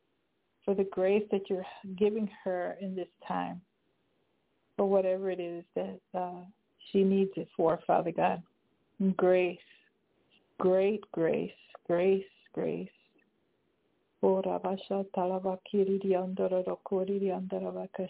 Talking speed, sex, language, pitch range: 115 wpm, female, English, 185-205 Hz